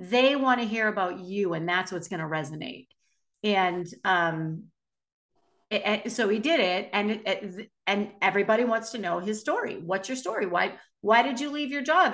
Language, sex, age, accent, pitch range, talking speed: English, female, 50-69, American, 180-225 Hz, 185 wpm